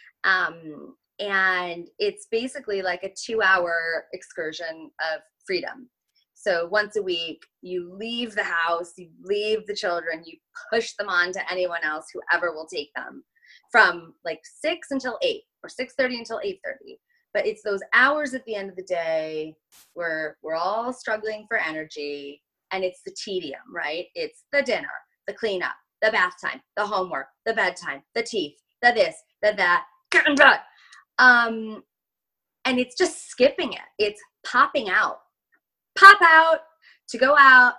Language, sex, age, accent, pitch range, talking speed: English, female, 20-39, American, 185-300 Hz, 155 wpm